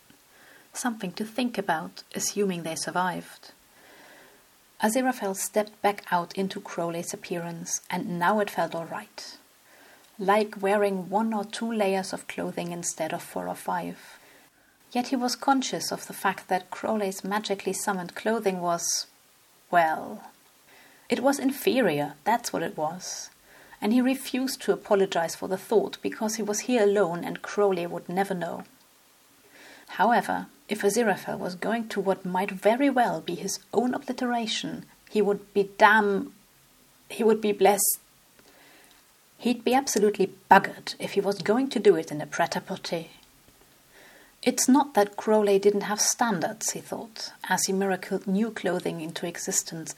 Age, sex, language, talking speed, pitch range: 30-49, female, English, 150 wpm, 180-215 Hz